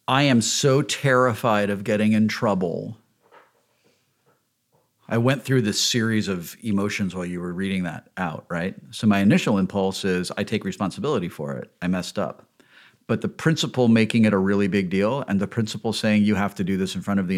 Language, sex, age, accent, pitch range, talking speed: English, male, 40-59, American, 95-120 Hz, 195 wpm